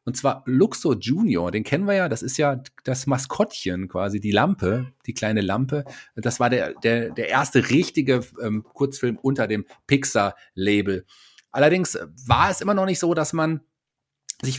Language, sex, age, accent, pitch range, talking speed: German, male, 30-49, German, 105-135 Hz, 170 wpm